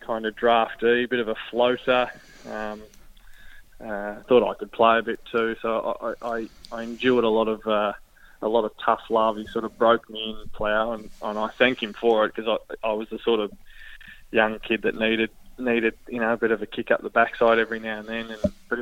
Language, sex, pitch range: English, male, 110-115 Hz